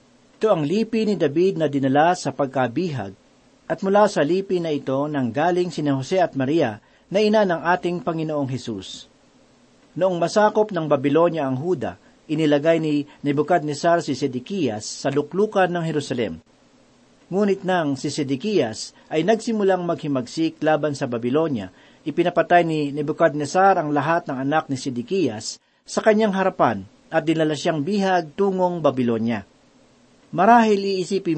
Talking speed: 140 wpm